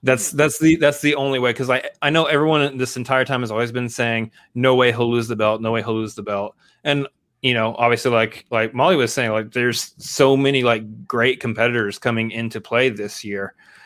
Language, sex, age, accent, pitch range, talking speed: English, male, 20-39, American, 110-130 Hz, 225 wpm